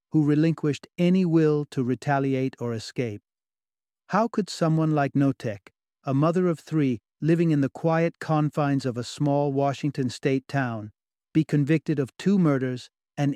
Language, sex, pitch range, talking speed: English, male, 125-160 Hz, 150 wpm